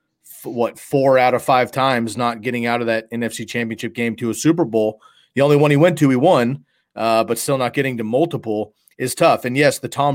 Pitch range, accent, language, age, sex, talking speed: 115-140 Hz, American, English, 30-49, male, 230 wpm